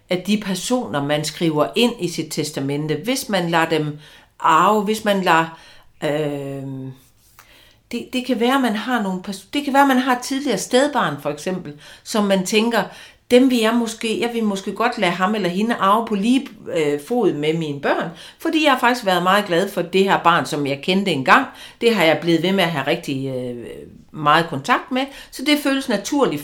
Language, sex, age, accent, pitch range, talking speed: Danish, female, 60-79, native, 150-210 Hz, 200 wpm